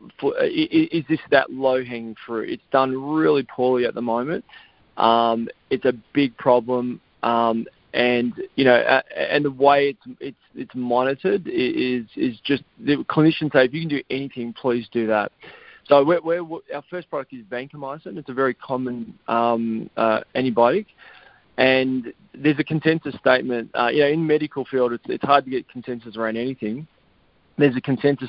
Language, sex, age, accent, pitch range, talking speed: English, male, 20-39, Australian, 120-150 Hz, 170 wpm